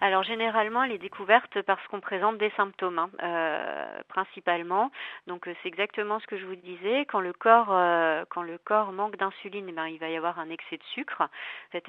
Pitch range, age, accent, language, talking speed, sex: 170-205 Hz, 40-59, French, French, 180 wpm, female